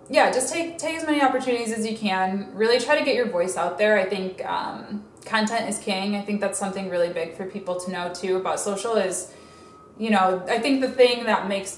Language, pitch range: English, 185-220 Hz